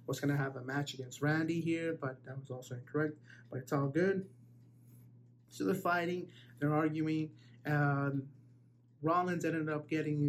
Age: 30-49